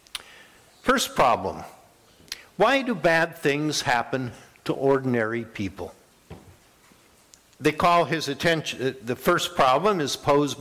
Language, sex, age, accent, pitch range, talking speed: English, male, 60-79, American, 130-165 Hz, 105 wpm